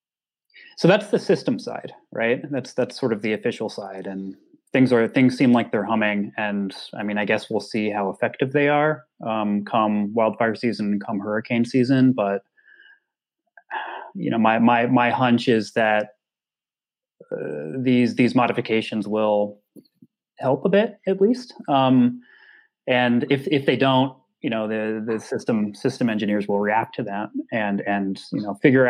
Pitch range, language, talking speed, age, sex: 105-140 Hz, English, 170 wpm, 30-49, male